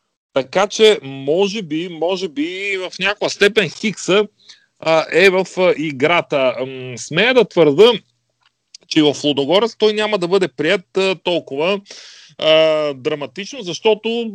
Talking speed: 130 wpm